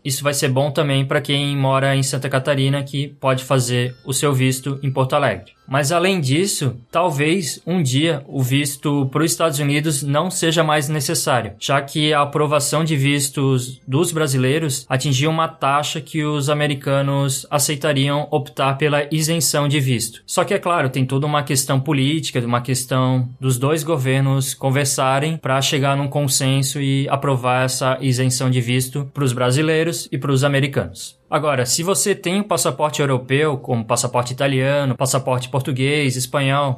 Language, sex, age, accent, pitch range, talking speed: Portuguese, male, 20-39, Brazilian, 135-155 Hz, 165 wpm